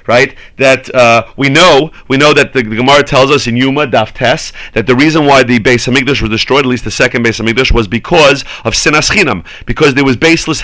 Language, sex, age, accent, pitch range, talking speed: English, male, 40-59, American, 130-170 Hz, 220 wpm